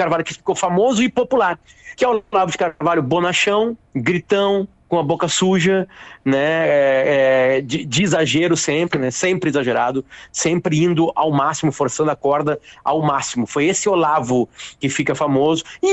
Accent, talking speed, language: Brazilian, 160 wpm, Portuguese